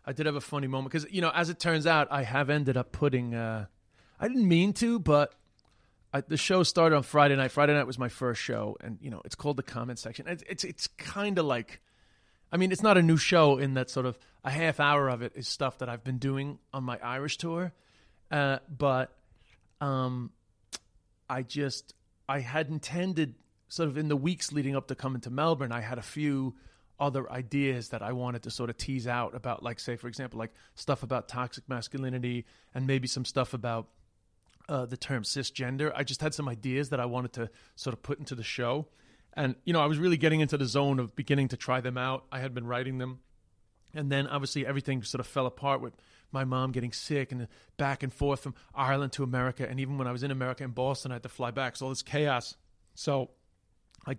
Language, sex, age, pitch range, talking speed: English, male, 30-49, 120-145 Hz, 225 wpm